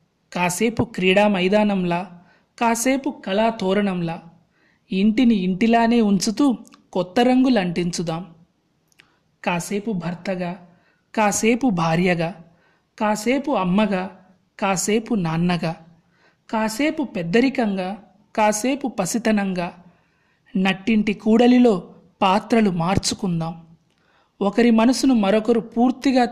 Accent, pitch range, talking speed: native, 180-230 Hz, 70 wpm